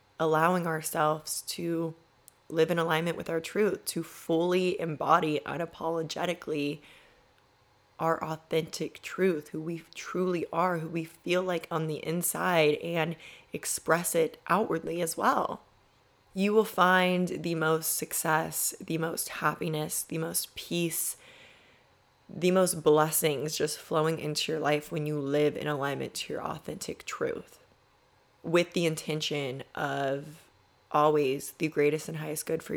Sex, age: female, 20-39